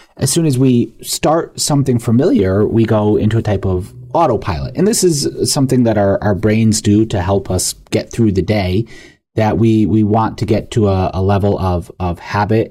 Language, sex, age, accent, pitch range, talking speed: English, male, 30-49, American, 100-120 Hz, 205 wpm